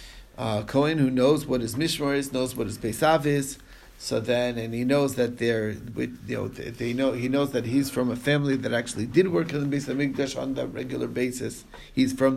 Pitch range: 120-155 Hz